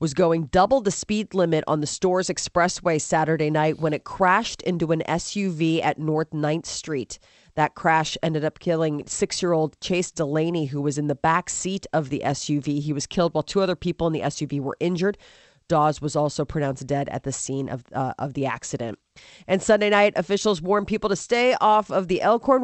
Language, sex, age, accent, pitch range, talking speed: English, female, 30-49, American, 155-190 Hz, 200 wpm